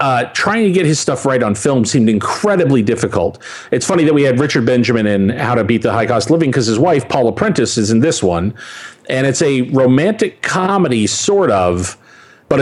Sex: male